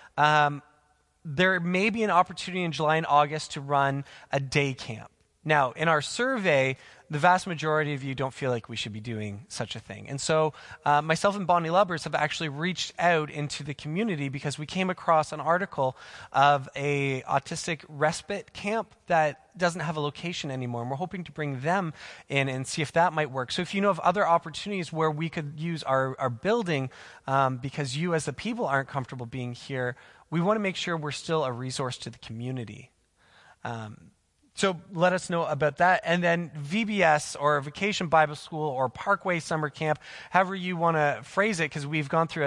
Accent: American